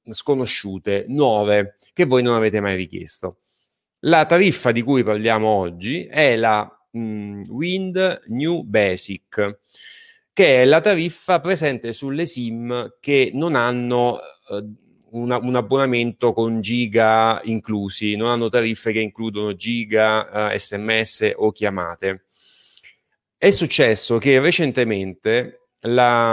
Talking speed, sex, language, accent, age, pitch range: 120 wpm, male, Italian, native, 30-49, 105-135 Hz